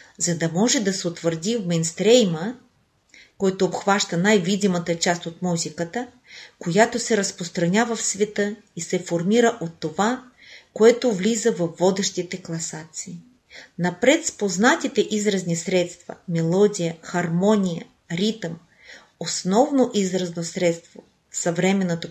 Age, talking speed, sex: 40-59, 115 wpm, female